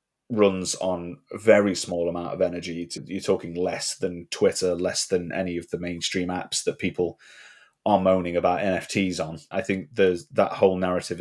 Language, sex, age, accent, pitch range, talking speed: English, male, 30-49, British, 90-100 Hz, 175 wpm